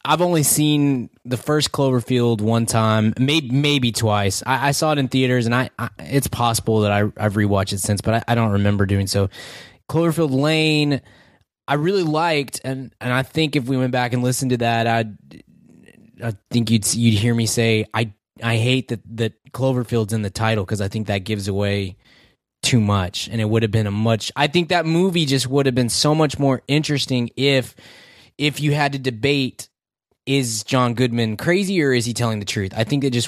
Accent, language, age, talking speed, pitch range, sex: American, English, 20-39, 210 wpm, 110-140 Hz, male